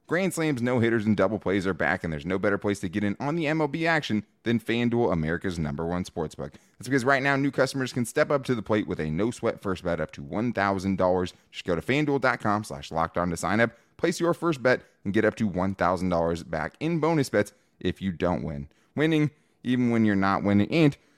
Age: 20-39